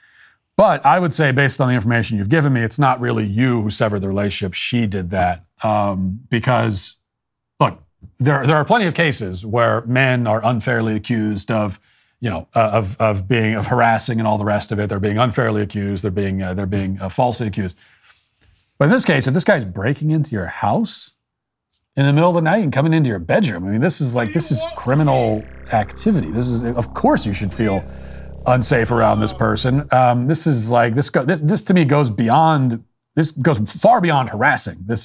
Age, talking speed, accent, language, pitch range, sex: 40-59, 210 wpm, American, English, 100-130 Hz, male